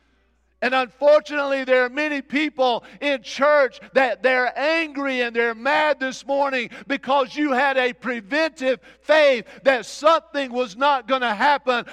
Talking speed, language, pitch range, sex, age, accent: 145 wpm, English, 210-290 Hz, male, 50-69, American